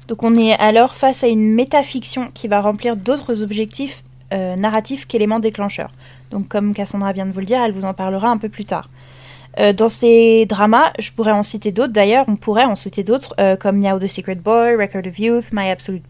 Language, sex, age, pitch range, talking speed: French, female, 20-39, 190-235 Hz, 215 wpm